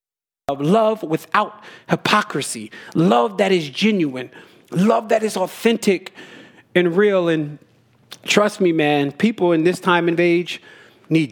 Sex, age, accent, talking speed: male, 30-49, American, 125 wpm